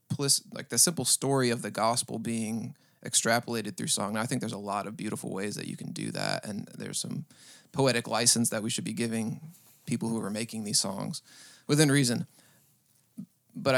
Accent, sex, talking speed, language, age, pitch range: American, male, 190 wpm, English, 30-49, 115-130 Hz